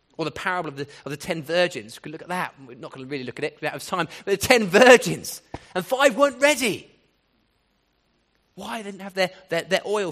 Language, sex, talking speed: English, male, 245 wpm